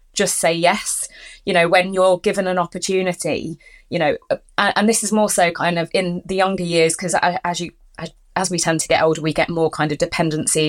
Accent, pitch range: British, 170-205 Hz